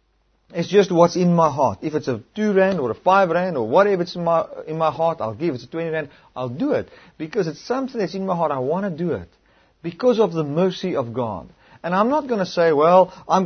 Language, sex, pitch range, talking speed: English, male, 130-180 Hz, 265 wpm